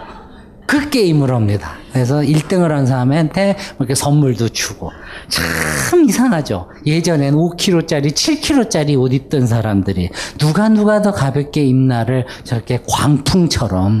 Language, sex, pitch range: Korean, male, 130-185 Hz